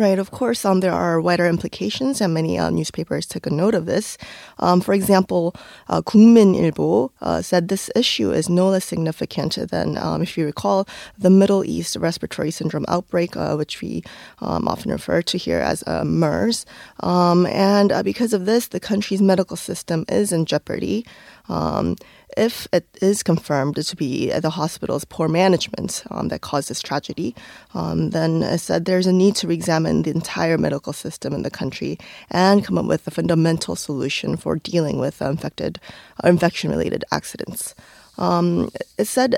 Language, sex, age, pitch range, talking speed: English, female, 20-39, 155-195 Hz, 175 wpm